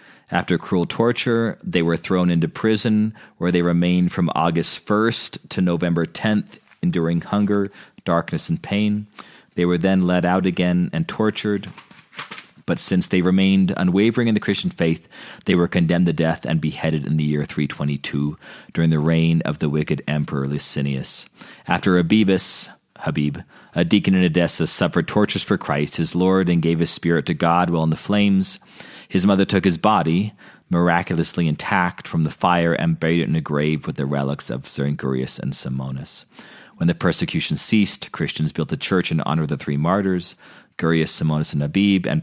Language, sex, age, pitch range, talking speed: English, male, 30-49, 80-95 Hz, 175 wpm